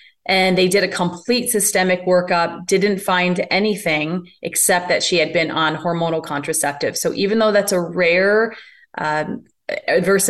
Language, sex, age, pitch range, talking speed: English, female, 20-39, 165-190 Hz, 150 wpm